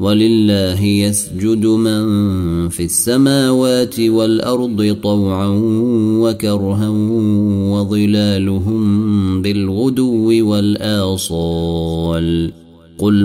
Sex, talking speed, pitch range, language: male, 55 wpm, 95-115 Hz, Arabic